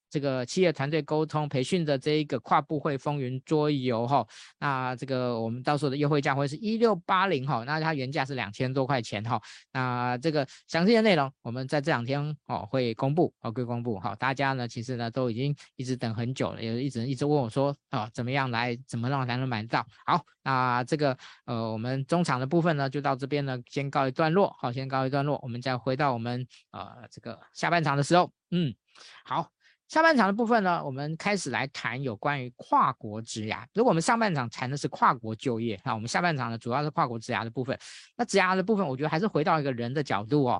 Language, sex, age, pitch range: Chinese, male, 20-39, 125-160 Hz